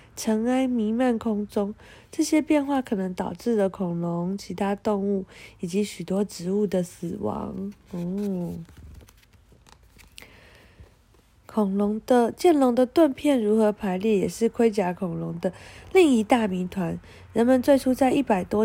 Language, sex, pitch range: Chinese, female, 180-235 Hz